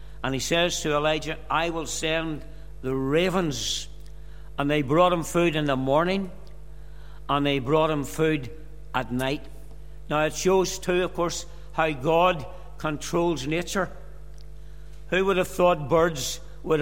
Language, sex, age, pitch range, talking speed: English, male, 60-79, 150-175 Hz, 145 wpm